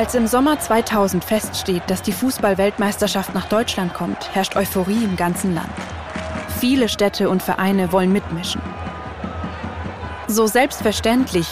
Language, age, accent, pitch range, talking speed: German, 20-39, German, 185-235 Hz, 125 wpm